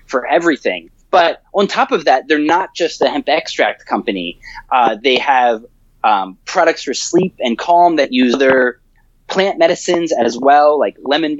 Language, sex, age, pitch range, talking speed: English, male, 20-39, 125-190 Hz, 170 wpm